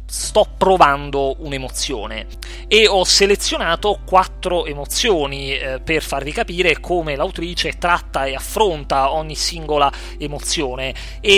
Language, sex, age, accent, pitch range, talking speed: Italian, male, 30-49, native, 135-170 Hz, 105 wpm